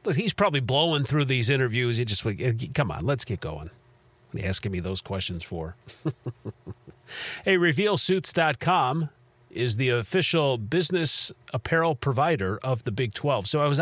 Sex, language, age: male, English, 40-59